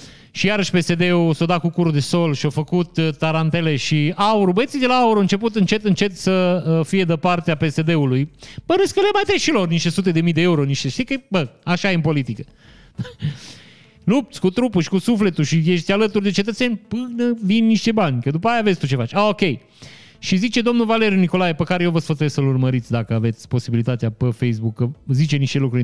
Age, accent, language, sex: 30-49, native, Romanian, male